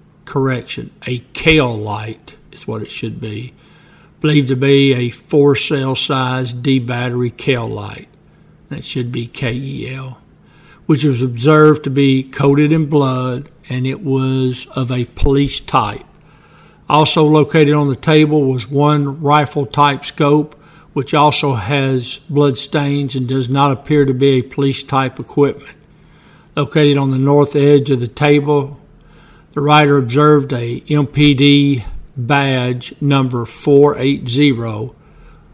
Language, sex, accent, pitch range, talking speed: English, male, American, 130-145 Hz, 135 wpm